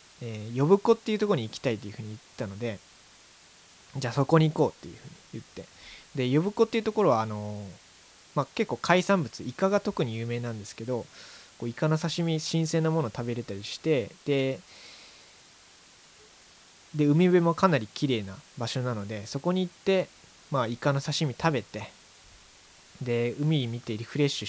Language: Japanese